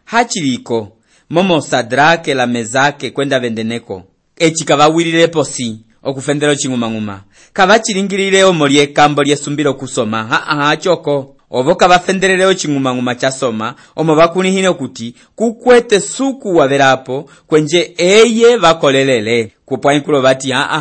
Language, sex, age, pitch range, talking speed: English, male, 30-49, 125-145 Hz, 125 wpm